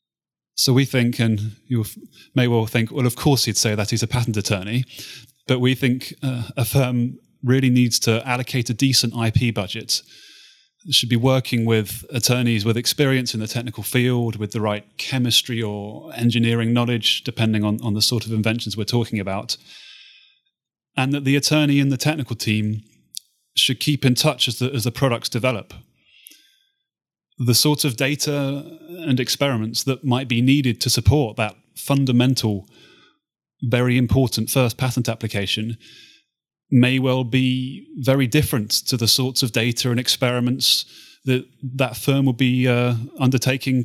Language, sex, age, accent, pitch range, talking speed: English, male, 30-49, British, 115-135 Hz, 160 wpm